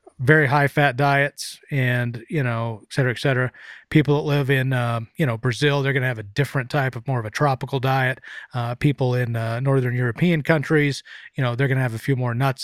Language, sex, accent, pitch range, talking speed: English, male, American, 125-160 Hz, 230 wpm